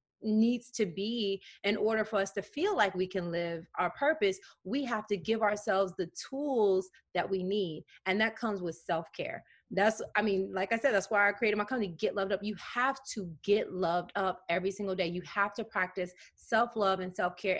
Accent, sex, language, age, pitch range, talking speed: American, female, English, 30-49, 185-225 Hz, 210 wpm